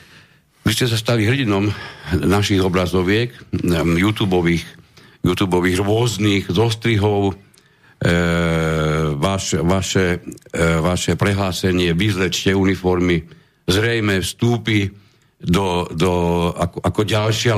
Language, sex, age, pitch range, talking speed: Slovak, male, 50-69, 85-105 Hz, 85 wpm